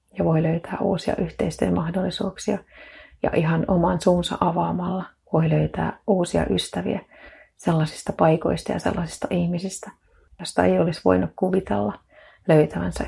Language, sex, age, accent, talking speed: Finnish, female, 30-49, native, 115 wpm